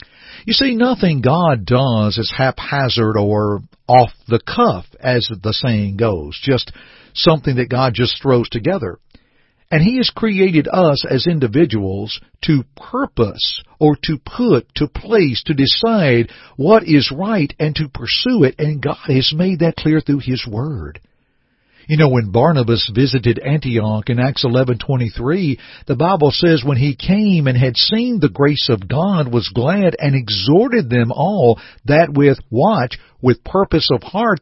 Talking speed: 155 wpm